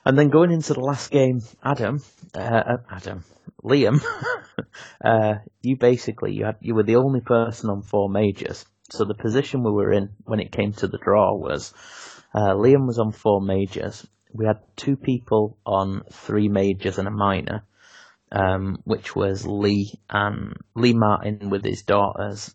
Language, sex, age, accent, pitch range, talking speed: English, male, 30-49, British, 95-110 Hz, 170 wpm